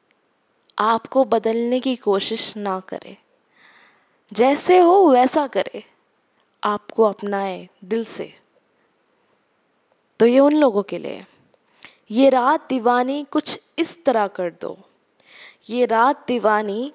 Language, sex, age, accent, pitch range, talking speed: Hindi, female, 10-29, native, 220-275 Hz, 110 wpm